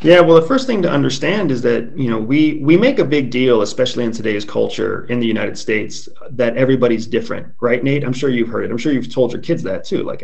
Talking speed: 260 wpm